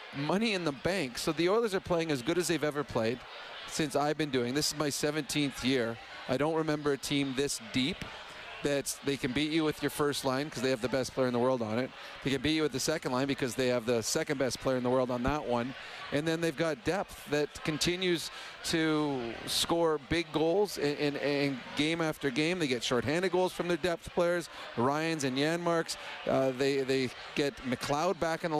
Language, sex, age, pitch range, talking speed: English, male, 40-59, 140-170 Hz, 225 wpm